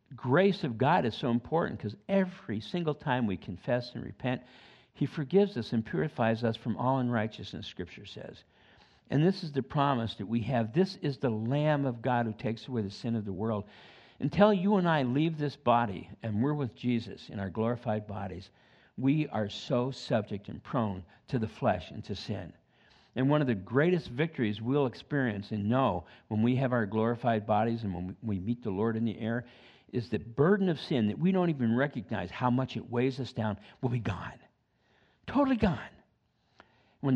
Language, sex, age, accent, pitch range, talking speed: English, male, 50-69, American, 110-145 Hz, 195 wpm